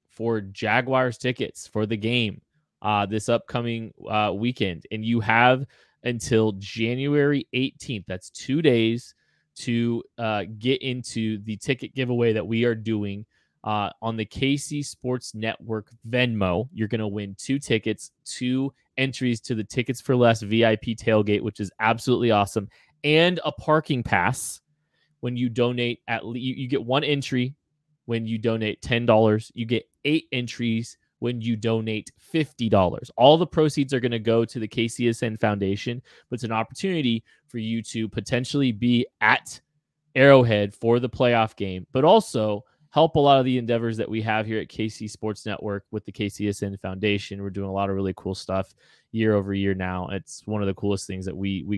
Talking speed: 175 wpm